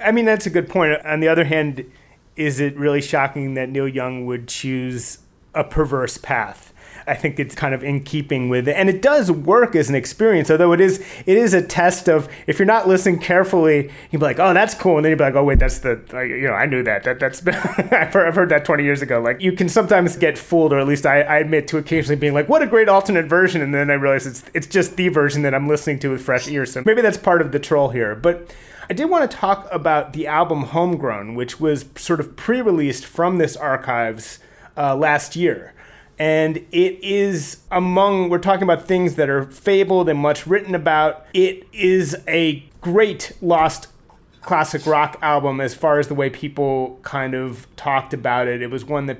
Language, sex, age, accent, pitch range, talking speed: English, male, 30-49, American, 140-180 Hz, 230 wpm